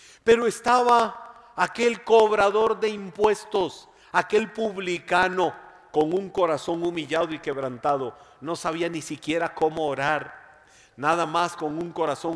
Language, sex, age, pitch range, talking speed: Spanish, male, 50-69, 150-195 Hz, 120 wpm